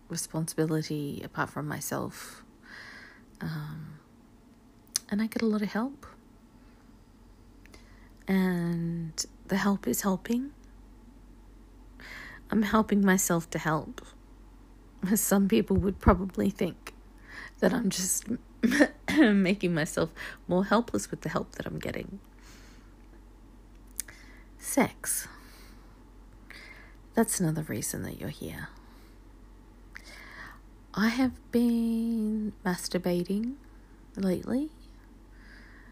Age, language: 40-59, English